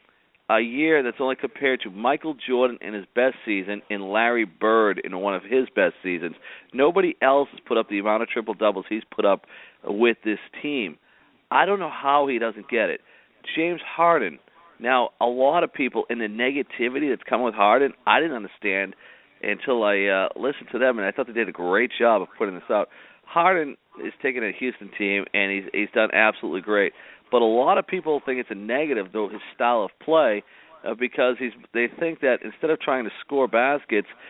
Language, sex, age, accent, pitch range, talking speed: English, male, 50-69, American, 105-140 Hz, 205 wpm